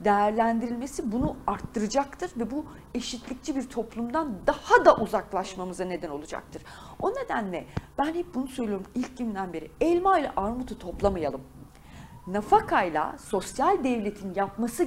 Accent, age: native, 40-59